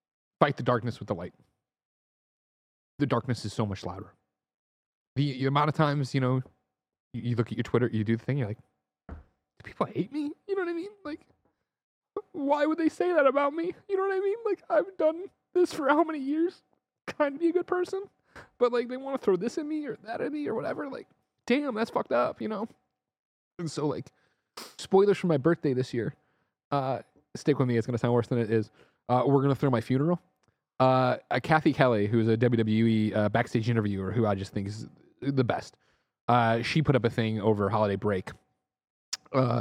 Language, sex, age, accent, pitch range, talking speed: English, male, 30-49, American, 110-170 Hz, 220 wpm